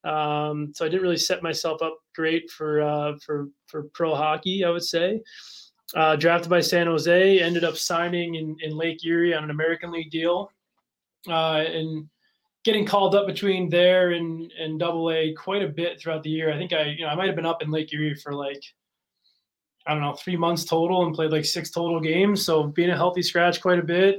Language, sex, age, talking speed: English, male, 20-39, 215 wpm